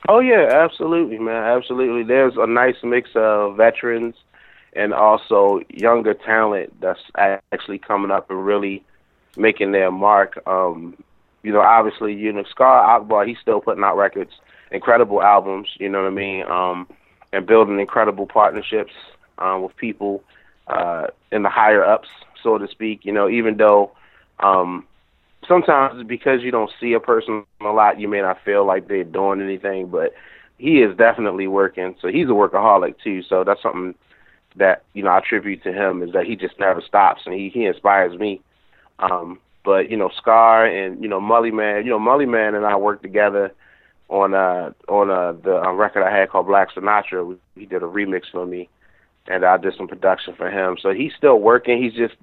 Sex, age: male, 30-49